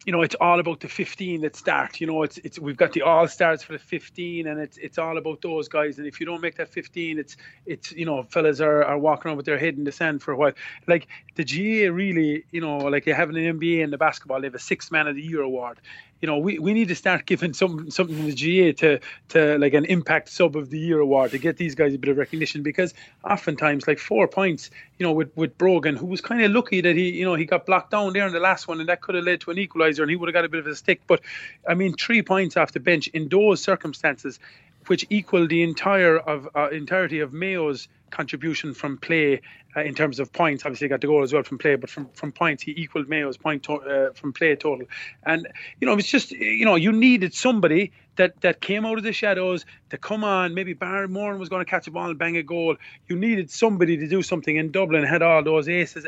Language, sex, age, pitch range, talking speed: English, male, 30-49, 150-180 Hz, 255 wpm